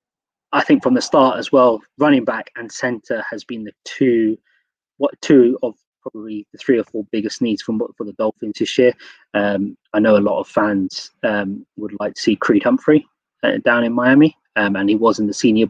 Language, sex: English, male